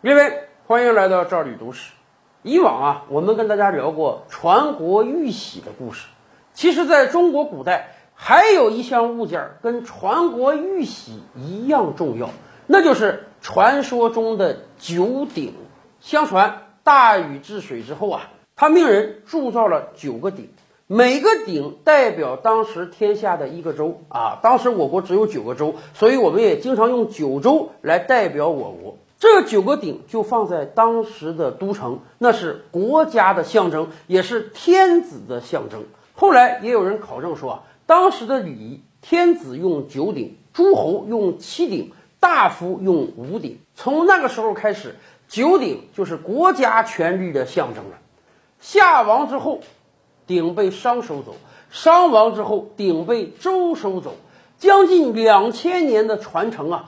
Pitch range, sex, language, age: 195-315 Hz, male, Chinese, 50-69